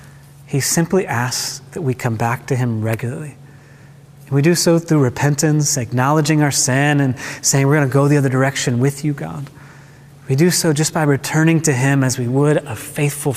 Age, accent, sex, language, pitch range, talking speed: 30-49, American, male, English, 135-155 Hz, 195 wpm